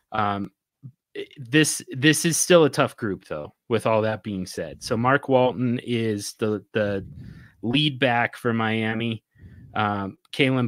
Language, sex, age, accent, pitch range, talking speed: English, male, 30-49, American, 110-140 Hz, 145 wpm